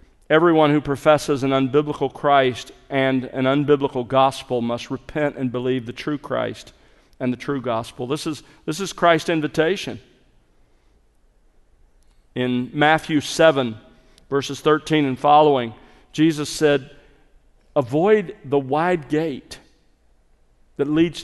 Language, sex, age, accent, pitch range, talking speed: English, male, 50-69, American, 130-155 Hz, 115 wpm